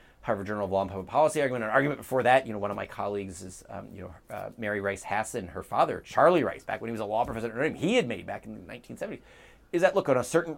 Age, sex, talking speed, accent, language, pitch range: 30-49, male, 285 wpm, American, English, 95-120 Hz